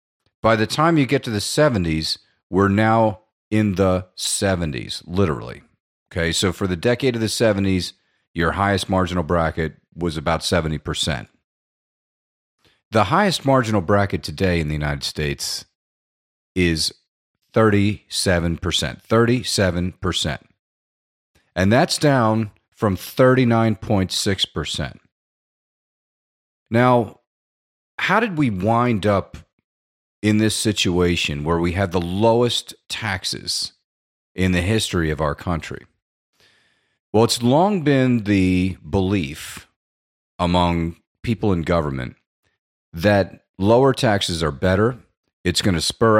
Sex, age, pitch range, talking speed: male, 40-59, 85-110 Hz, 110 wpm